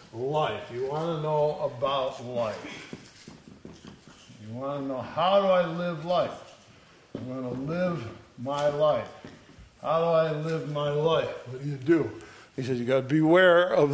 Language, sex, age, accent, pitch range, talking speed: English, male, 60-79, American, 135-165 Hz, 170 wpm